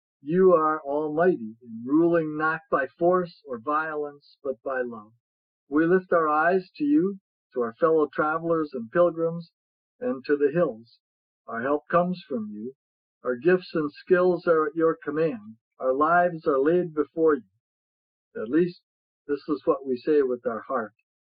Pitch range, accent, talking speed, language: 130-170 Hz, American, 165 wpm, English